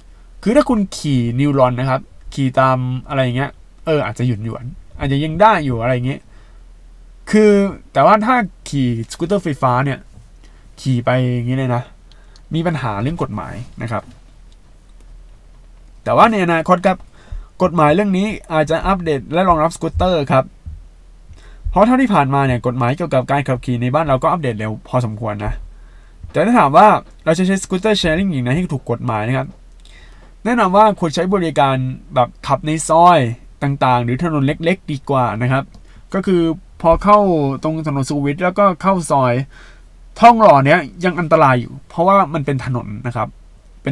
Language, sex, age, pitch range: Thai, male, 20-39, 125-175 Hz